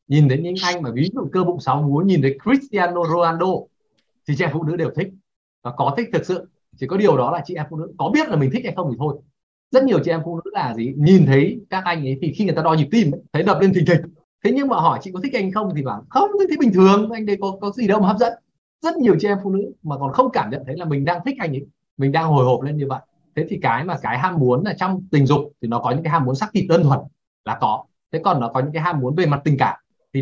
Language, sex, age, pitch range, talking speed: Vietnamese, male, 20-39, 140-190 Hz, 310 wpm